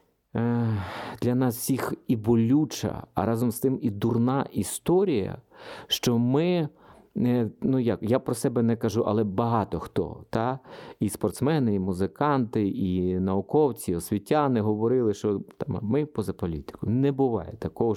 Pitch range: 95-125 Hz